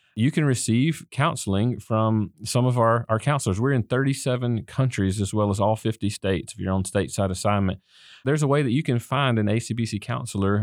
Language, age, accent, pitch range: English, 30-49, American, 100-125 Hz